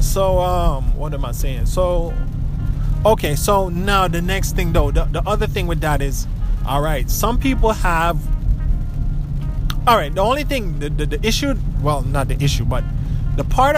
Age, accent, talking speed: 20-39, American, 185 wpm